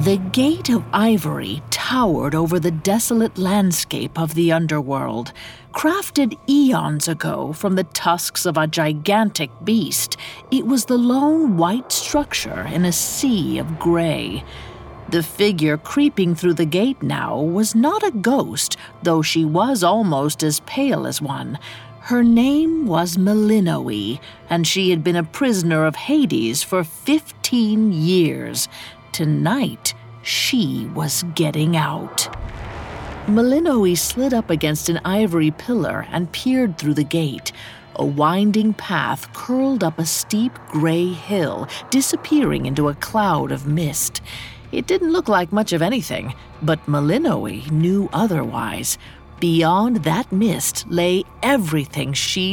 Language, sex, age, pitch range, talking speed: English, female, 50-69, 155-225 Hz, 135 wpm